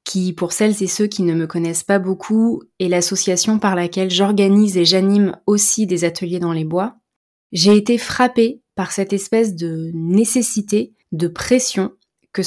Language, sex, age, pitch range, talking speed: French, female, 20-39, 180-215 Hz, 170 wpm